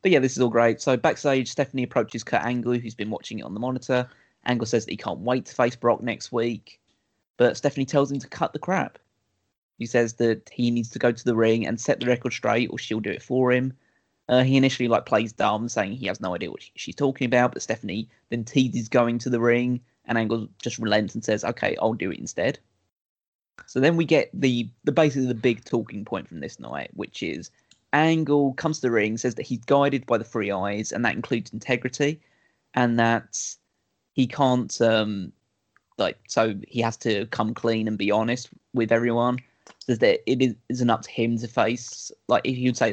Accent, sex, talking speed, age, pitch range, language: British, male, 220 wpm, 20-39, 115-130 Hz, English